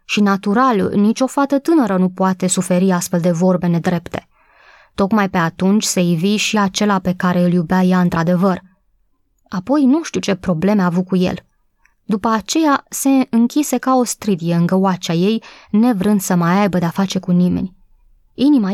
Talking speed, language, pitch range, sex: 170 wpm, Romanian, 185-260 Hz, female